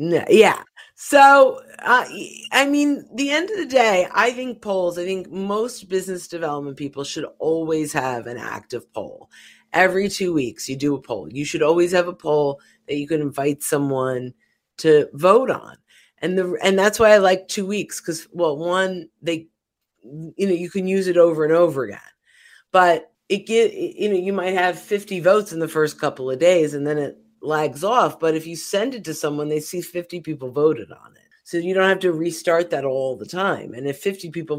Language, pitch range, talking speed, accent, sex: English, 155-195 Hz, 205 wpm, American, female